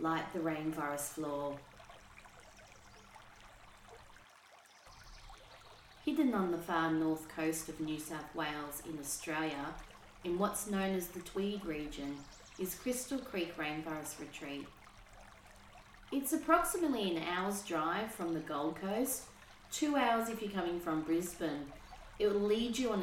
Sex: female